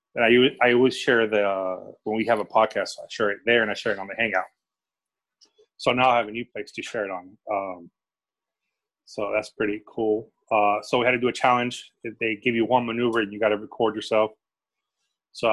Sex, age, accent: male, 30-49, American